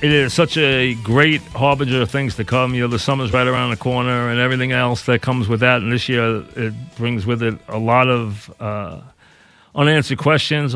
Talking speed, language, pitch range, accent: 210 wpm, English, 110-130 Hz, American